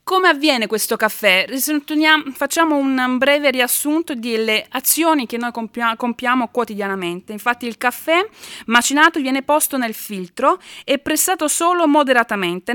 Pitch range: 220-305 Hz